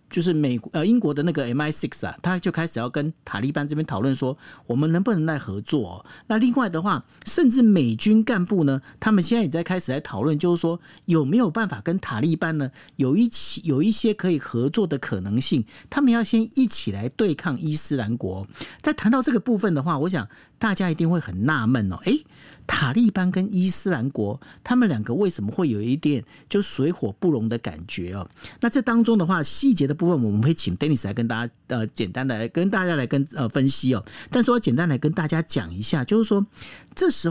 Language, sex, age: Chinese, male, 50-69